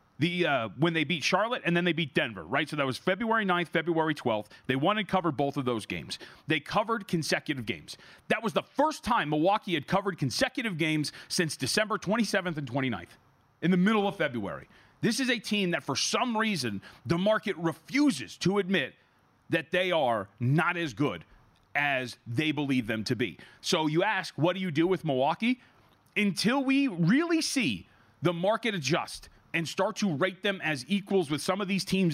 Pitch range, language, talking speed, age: 140-210 Hz, English, 195 wpm, 30-49